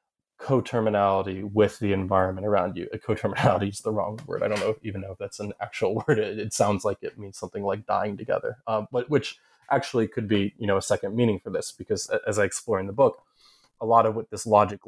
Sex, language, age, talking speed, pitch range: male, English, 20-39, 235 wpm, 105-120 Hz